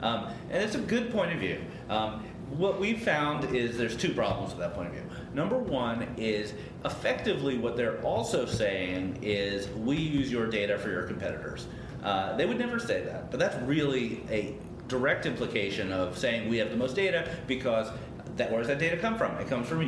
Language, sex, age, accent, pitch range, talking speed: English, male, 30-49, American, 100-130 Hz, 200 wpm